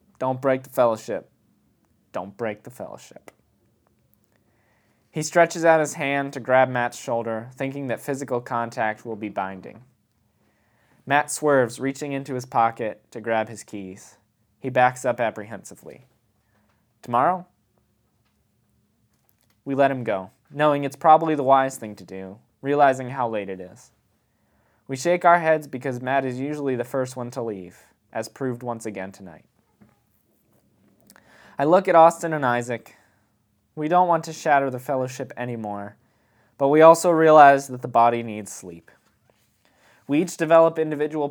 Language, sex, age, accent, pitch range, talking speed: English, male, 20-39, American, 110-140 Hz, 145 wpm